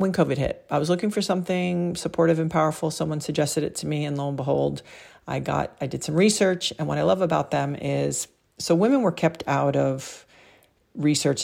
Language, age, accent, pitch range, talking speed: English, 50-69, American, 140-170 Hz, 210 wpm